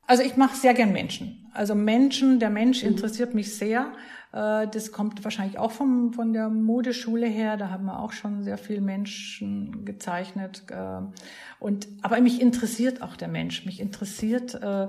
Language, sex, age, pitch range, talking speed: German, female, 50-69, 195-235 Hz, 160 wpm